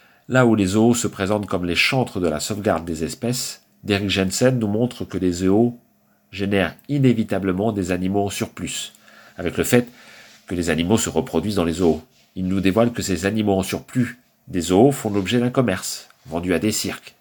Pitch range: 95-115 Hz